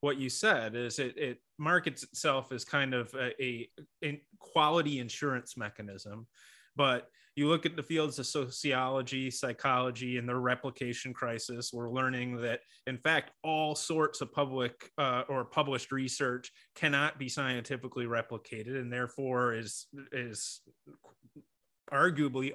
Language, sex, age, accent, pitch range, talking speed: English, male, 30-49, American, 120-140 Hz, 140 wpm